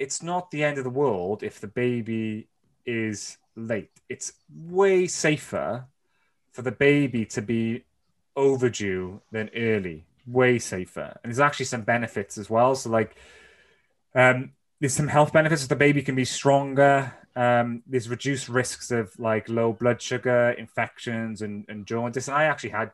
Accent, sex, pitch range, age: British, male, 105-130 Hz, 20-39